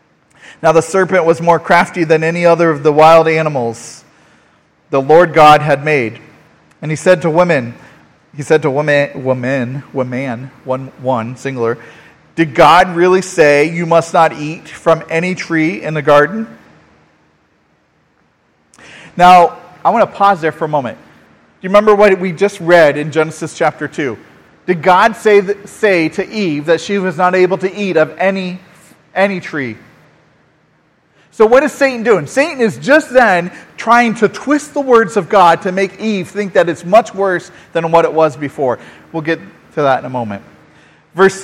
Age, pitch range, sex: 40-59, 140-190 Hz, male